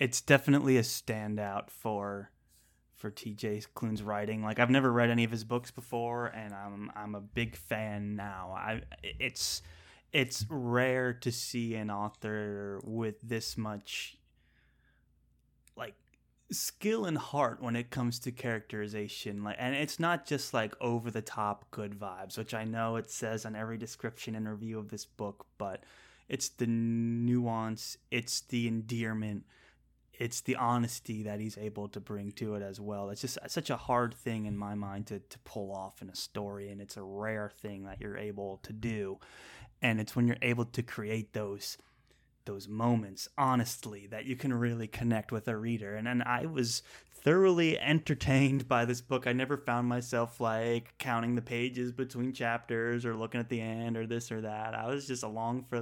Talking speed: 180 wpm